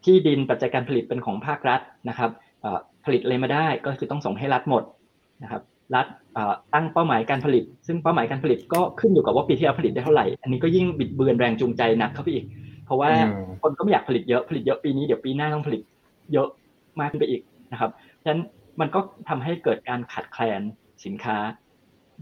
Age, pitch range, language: 20-39, 120-155 Hz, Thai